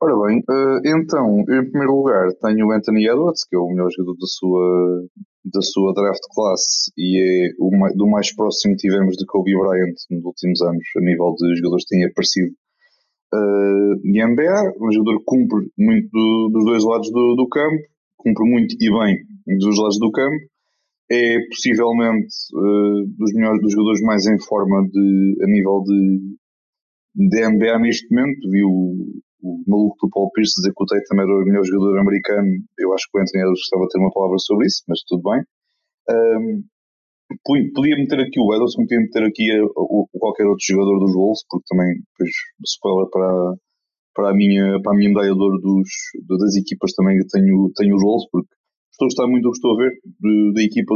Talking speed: 190 wpm